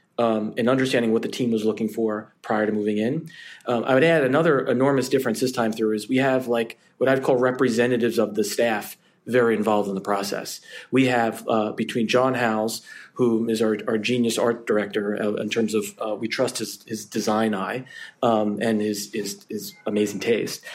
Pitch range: 110-130 Hz